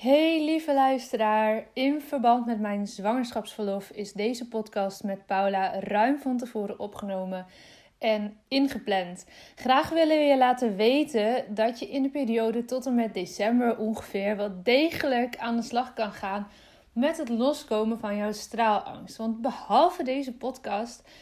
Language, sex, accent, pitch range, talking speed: Dutch, female, Dutch, 205-255 Hz, 145 wpm